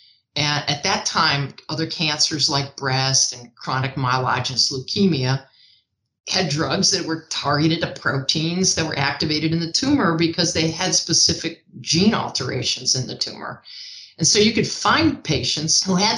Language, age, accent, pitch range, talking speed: English, 50-69, American, 140-180 Hz, 155 wpm